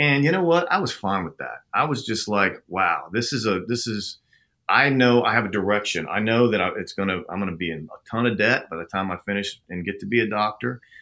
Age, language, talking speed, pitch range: 40-59, English, 280 wpm, 90-120 Hz